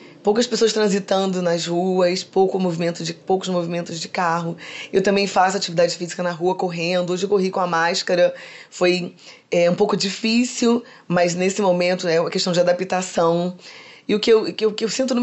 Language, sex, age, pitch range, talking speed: Portuguese, female, 20-39, 175-215 Hz, 195 wpm